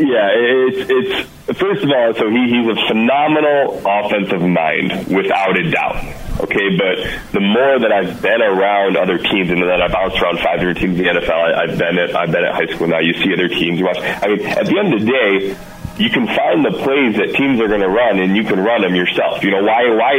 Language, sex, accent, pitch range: English, male, American, 95-110 Hz